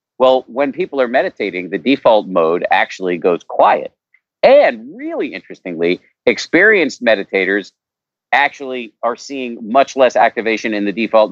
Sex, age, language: male, 50-69, English